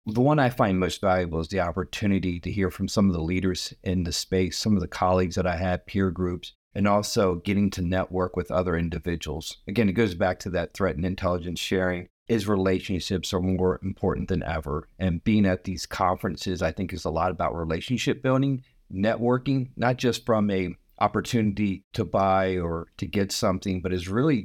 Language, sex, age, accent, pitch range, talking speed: English, male, 40-59, American, 85-100 Hz, 200 wpm